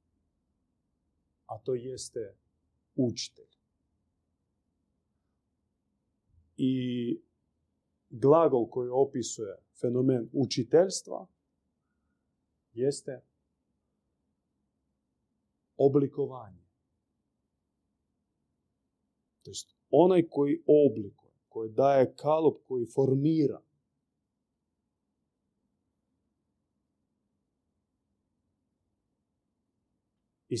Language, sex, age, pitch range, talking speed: Croatian, male, 40-59, 115-160 Hz, 45 wpm